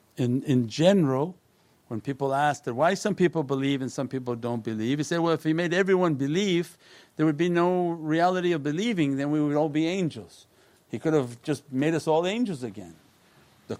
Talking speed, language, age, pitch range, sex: 205 wpm, English, 50-69, 135-185 Hz, male